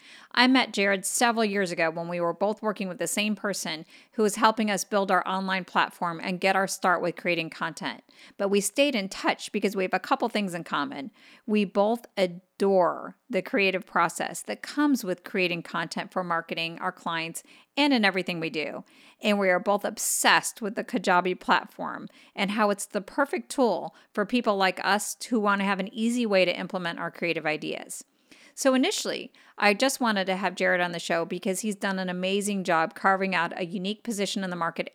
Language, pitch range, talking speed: English, 185-230 Hz, 205 wpm